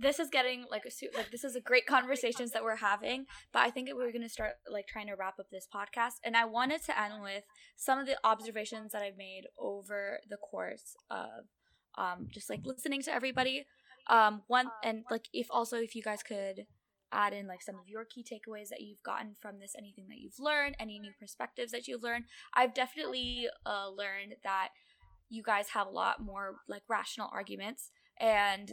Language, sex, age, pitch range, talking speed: English, female, 10-29, 200-245 Hz, 210 wpm